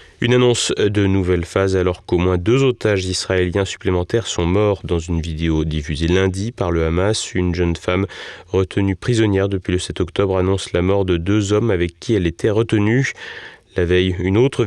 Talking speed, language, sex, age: 190 wpm, French, male, 30-49